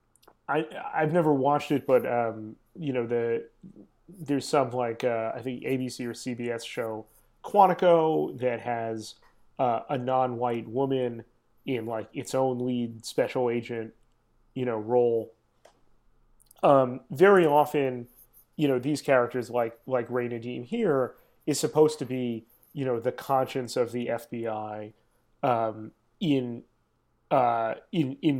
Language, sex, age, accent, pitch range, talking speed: English, male, 30-49, American, 115-150 Hz, 135 wpm